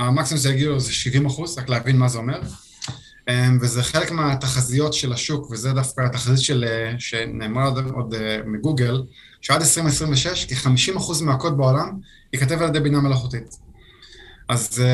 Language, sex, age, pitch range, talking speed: Hebrew, male, 20-39, 130-150 Hz, 140 wpm